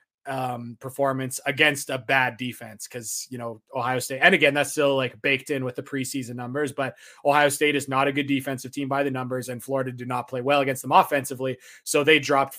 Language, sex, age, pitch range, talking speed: English, male, 20-39, 130-150 Hz, 220 wpm